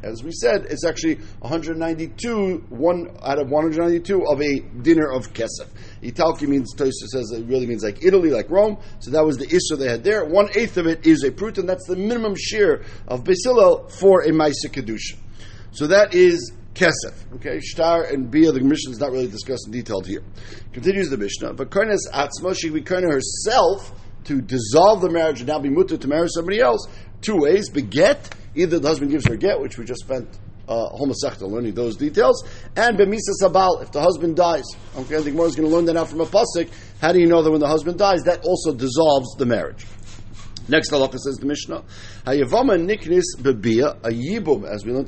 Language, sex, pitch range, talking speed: English, male, 130-180 Hz, 200 wpm